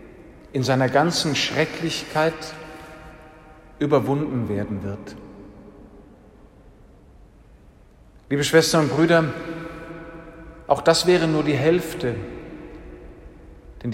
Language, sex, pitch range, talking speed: German, male, 125-150 Hz, 80 wpm